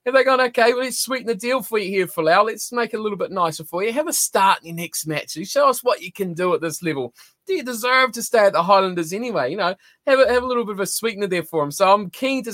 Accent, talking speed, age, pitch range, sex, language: Australian, 310 wpm, 20-39, 150-195 Hz, male, English